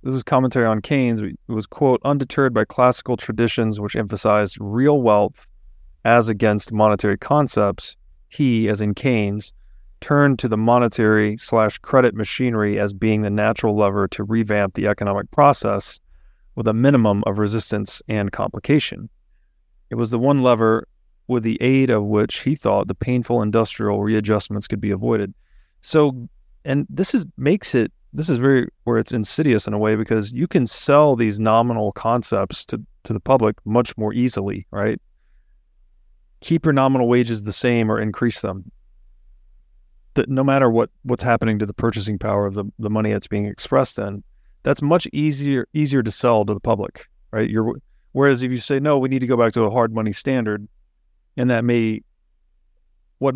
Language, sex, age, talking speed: English, male, 30-49, 175 wpm